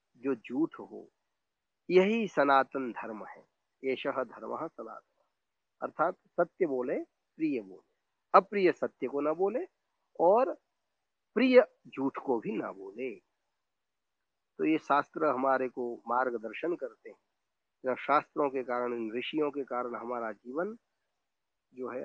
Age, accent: 50-69, native